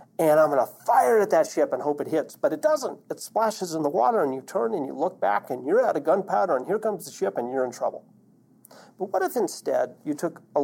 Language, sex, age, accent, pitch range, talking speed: English, male, 50-69, American, 140-210 Hz, 270 wpm